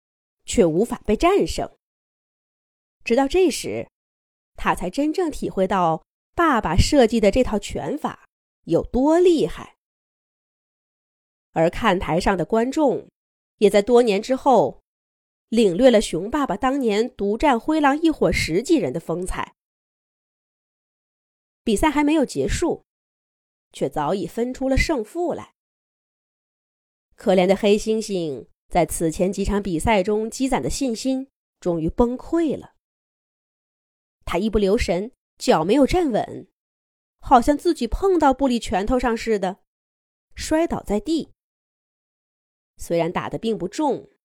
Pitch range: 195-275 Hz